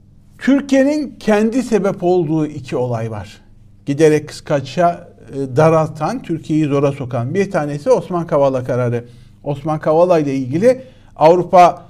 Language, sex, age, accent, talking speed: Turkish, male, 50-69, native, 115 wpm